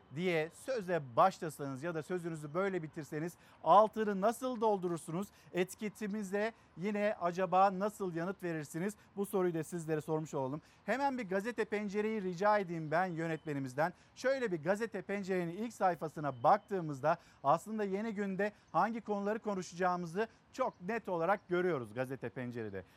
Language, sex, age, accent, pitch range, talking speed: Turkish, male, 50-69, native, 160-210 Hz, 130 wpm